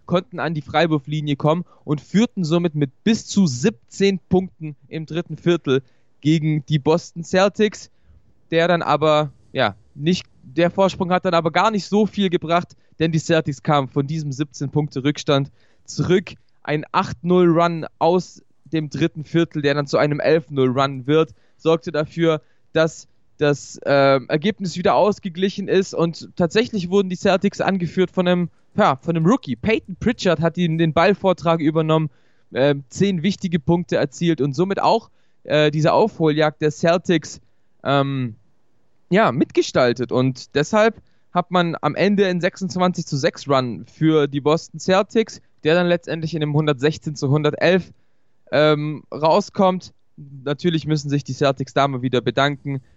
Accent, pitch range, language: German, 140-175 Hz, German